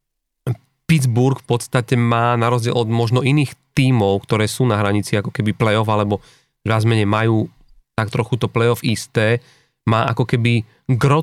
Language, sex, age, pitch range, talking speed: Slovak, male, 40-59, 110-130 Hz, 155 wpm